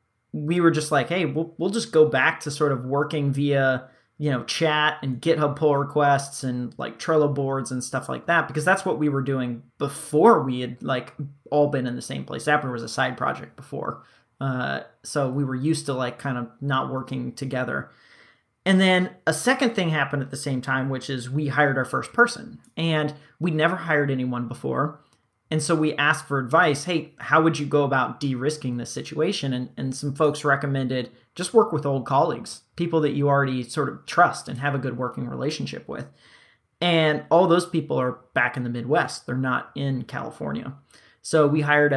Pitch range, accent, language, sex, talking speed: 130-155 Hz, American, English, male, 205 wpm